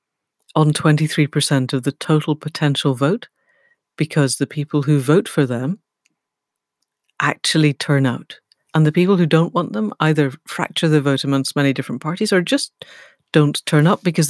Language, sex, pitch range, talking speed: English, female, 140-170 Hz, 165 wpm